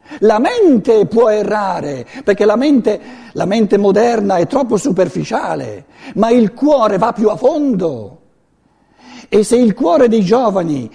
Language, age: Italian, 60-79